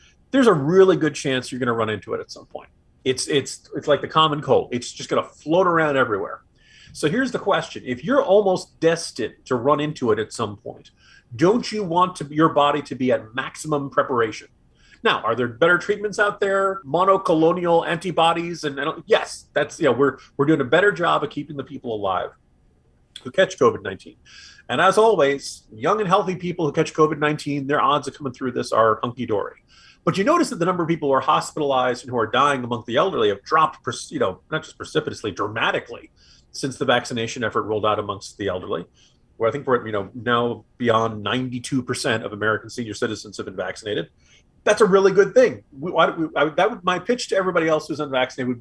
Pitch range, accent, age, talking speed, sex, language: 125-180 Hz, American, 30-49, 210 wpm, male, English